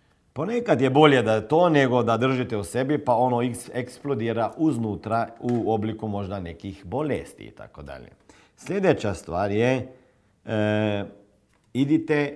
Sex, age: male, 50-69